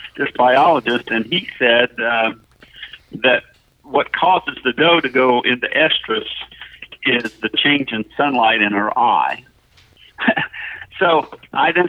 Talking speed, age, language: 130 wpm, 60-79, English